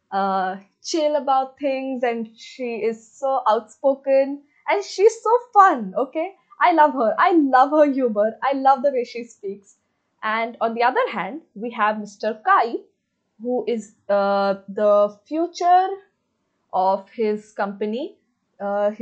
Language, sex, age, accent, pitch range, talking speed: English, female, 20-39, Indian, 220-295 Hz, 140 wpm